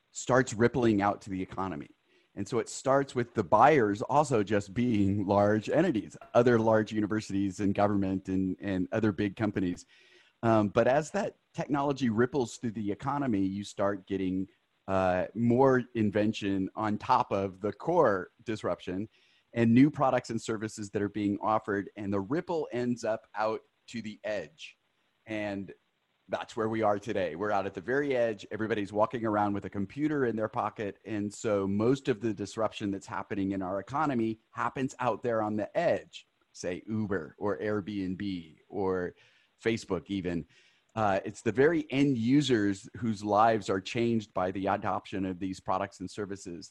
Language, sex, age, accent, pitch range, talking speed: English, male, 30-49, American, 100-120 Hz, 165 wpm